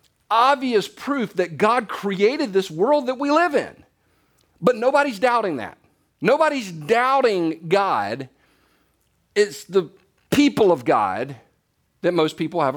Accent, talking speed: American, 125 wpm